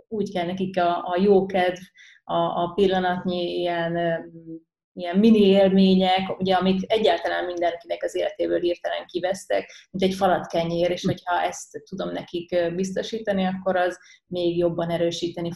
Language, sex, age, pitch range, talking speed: Hungarian, female, 30-49, 170-195 Hz, 140 wpm